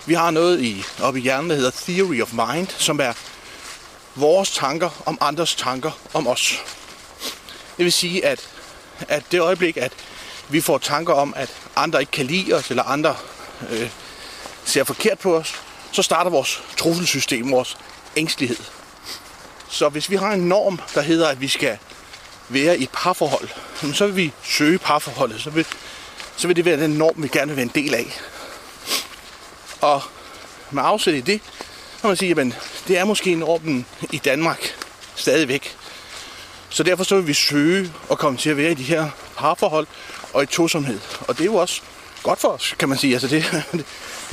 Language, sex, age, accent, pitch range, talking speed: Danish, male, 30-49, native, 145-180 Hz, 185 wpm